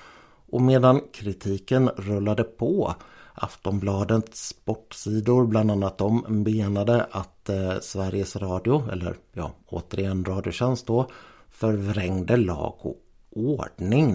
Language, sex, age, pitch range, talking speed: Swedish, male, 60-79, 95-120 Hz, 100 wpm